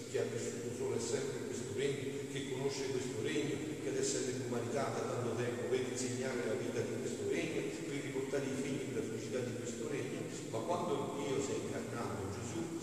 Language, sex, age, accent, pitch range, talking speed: Italian, male, 40-59, native, 120-140 Hz, 195 wpm